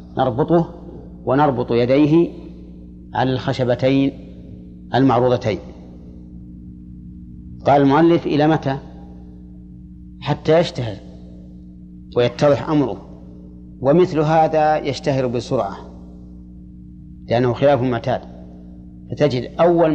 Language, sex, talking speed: Arabic, male, 70 wpm